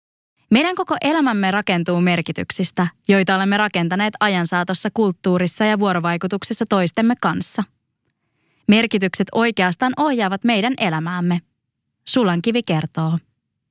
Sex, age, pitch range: female, 20-39, 170-210 Hz